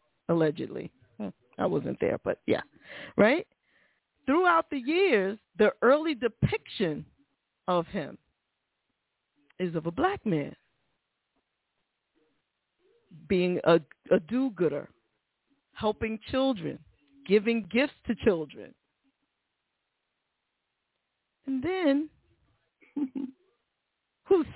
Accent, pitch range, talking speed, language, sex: American, 205-290 Hz, 80 wpm, English, female